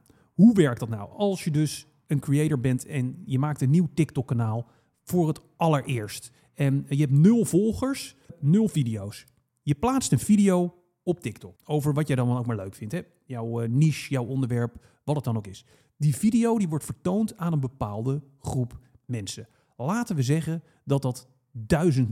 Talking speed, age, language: 175 wpm, 40-59, Dutch